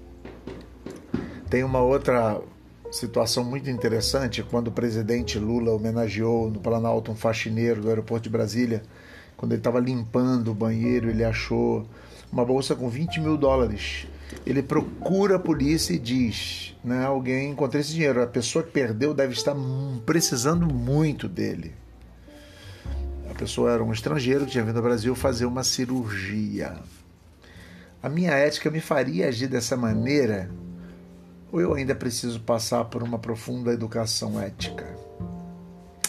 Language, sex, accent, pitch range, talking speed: Portuguese, male, Brazilian, 110-135 Hz, 140 wpm